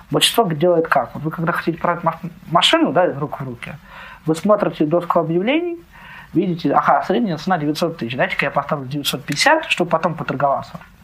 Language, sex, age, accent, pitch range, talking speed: Ukrainian, male, 20-39, native, 130-165 Hz, 170 wpm